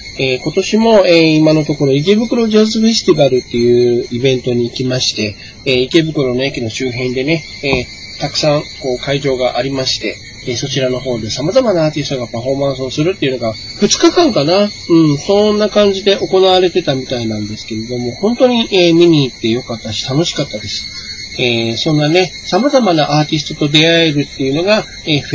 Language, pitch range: Japanese, 120-165 Hz